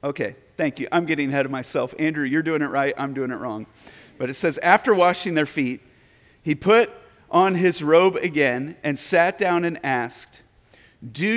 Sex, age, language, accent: male, 40-59, English, American